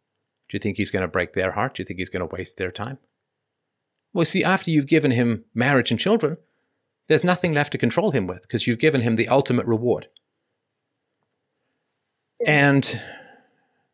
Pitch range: 100-135 Hz